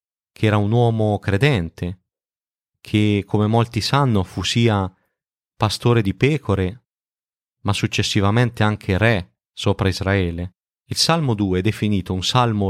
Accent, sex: native, male